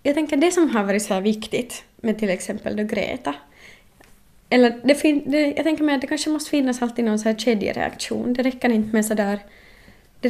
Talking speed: 220 wpm